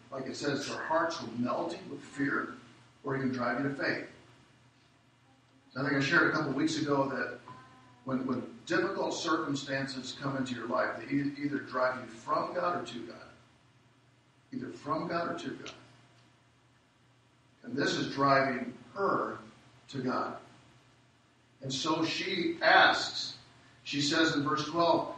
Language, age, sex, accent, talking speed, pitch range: English, 50-69, male, American, 155 wpm, 125-160 Hz